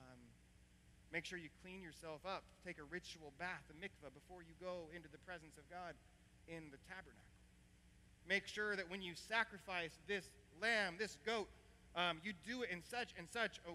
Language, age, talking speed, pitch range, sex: English, 30-49, 185 wpm, 175-240 Hz, male